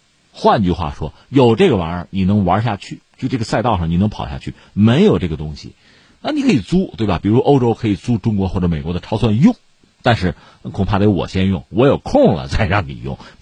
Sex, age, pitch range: male, 50-69, 90-130 Hz